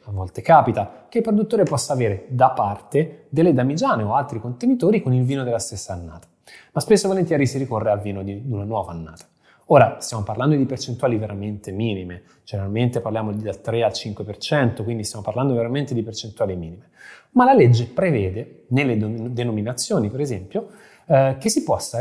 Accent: native